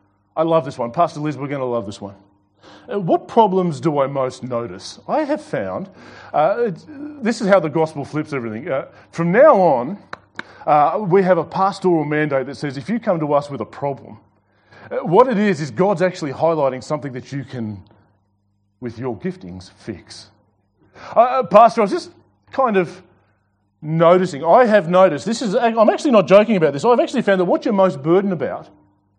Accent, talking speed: Australian, 190 wpm